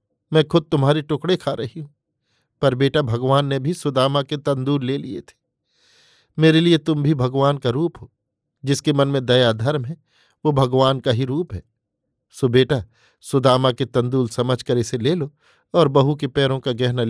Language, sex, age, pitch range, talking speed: Hindi, male, 50-69, 125-150 Hz, 185 wpm